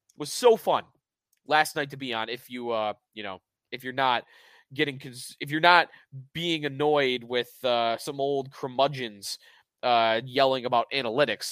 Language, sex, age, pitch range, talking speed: English, male, 20-39, 130-165 Hz, 160 wpm